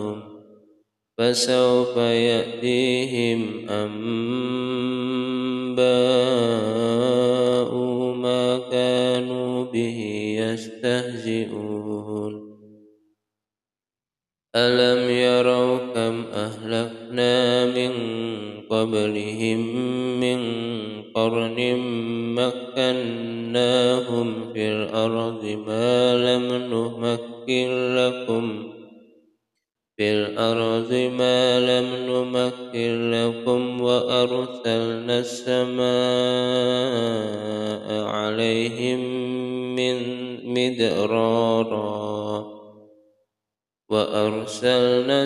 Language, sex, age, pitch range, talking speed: Indonesian, male, 20-39, 110-125 Hz, 40 wpm